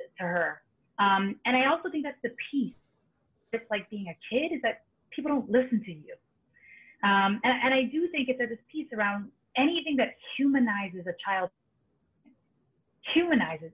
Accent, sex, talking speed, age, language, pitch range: American, female, 165 wpm, 30-49, English, 185-230 Hz